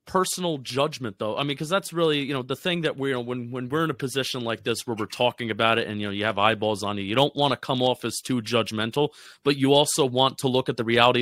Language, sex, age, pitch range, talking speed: English, male, 30-49, 115-145 Hz, 285 wpm